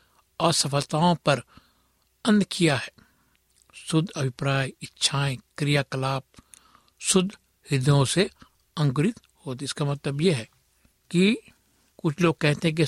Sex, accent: male, native